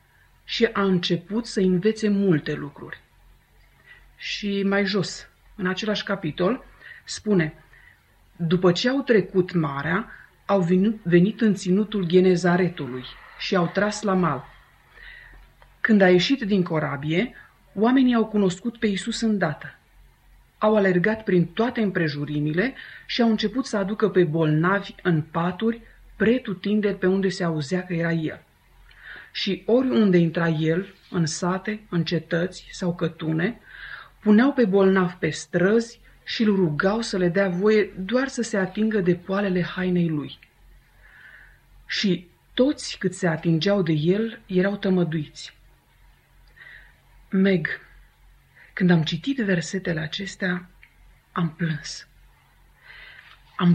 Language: Romanian